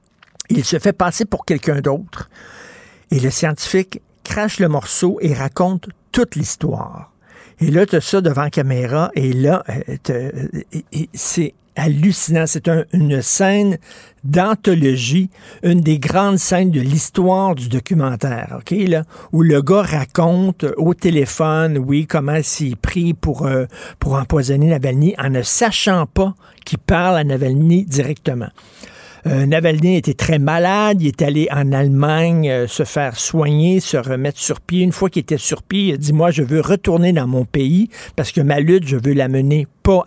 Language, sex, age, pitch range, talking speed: French, male, 60-79, 140-180 Hz, 165 wpm